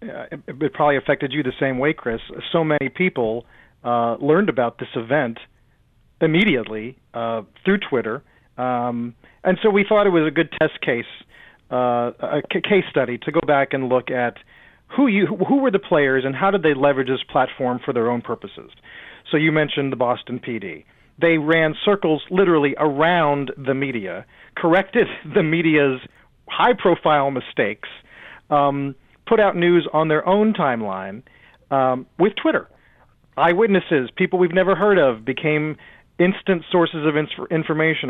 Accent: American